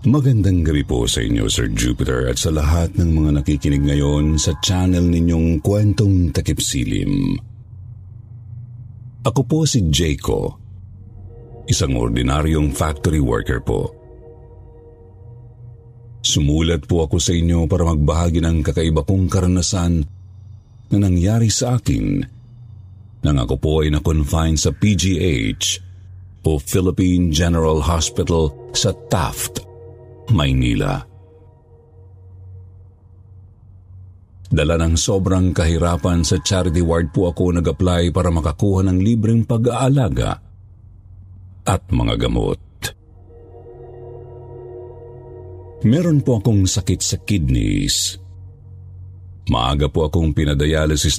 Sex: male